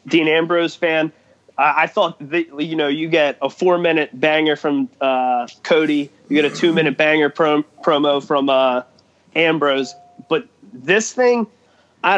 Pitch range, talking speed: 145-170 Hz, 165 wpm